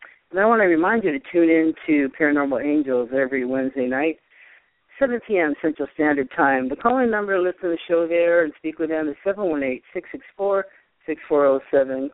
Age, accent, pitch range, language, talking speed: 50-69, American, 135-170 Hz, English, 175 wpm